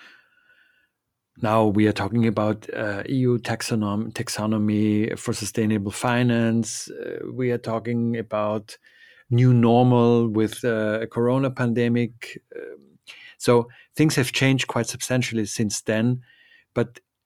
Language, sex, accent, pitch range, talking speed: English, male, German, 115-125 Hz, 120 wpm